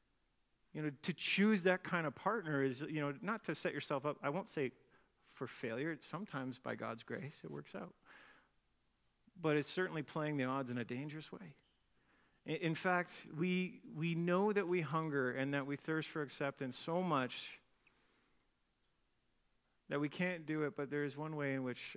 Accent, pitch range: American, 130-185 Hz